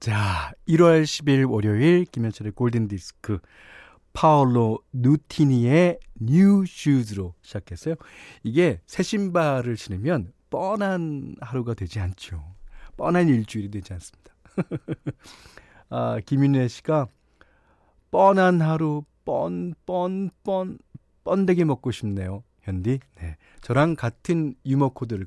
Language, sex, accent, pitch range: Korean, male, native, 105-170 Hz